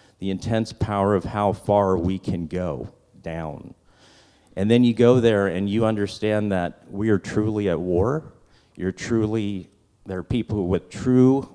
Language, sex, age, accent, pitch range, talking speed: English, male, 40-59, American, 95-110 Hz, 160 wpm